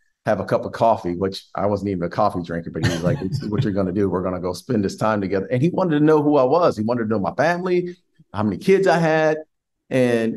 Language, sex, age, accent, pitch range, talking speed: English, male, 40-59, American, 105-145 Hz, 295 wpm